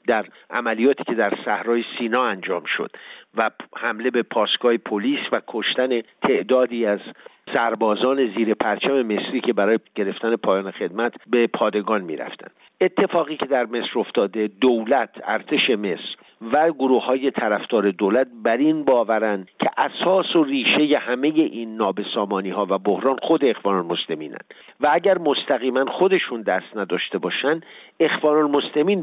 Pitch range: 115-140 Hz